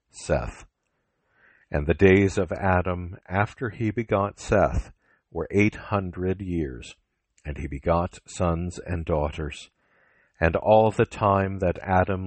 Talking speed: 125 wpm